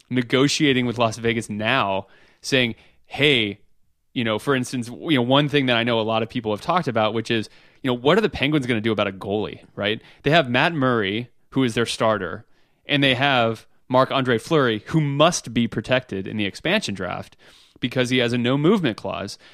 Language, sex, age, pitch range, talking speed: English, male, 30-49, 115-145 Hz, 210 wpm